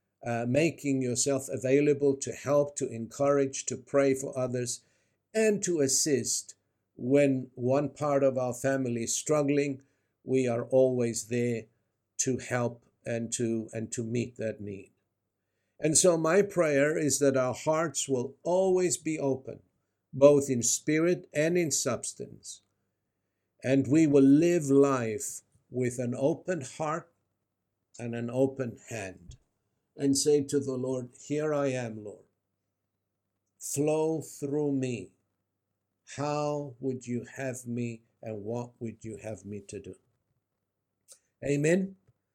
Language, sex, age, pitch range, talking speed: English, male, 50-69, 110-140 Hz, 130 wpm